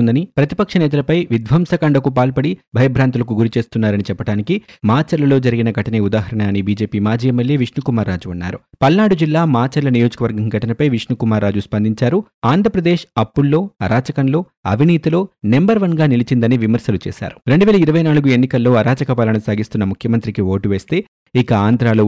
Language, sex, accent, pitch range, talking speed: Telugu, male, native, 110-145 Hz, 115 wpm